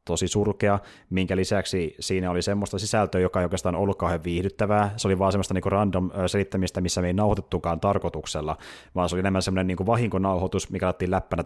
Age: 30-49